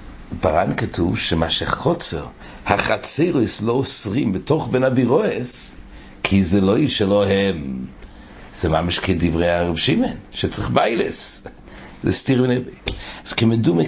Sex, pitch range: male, 95-125 Hz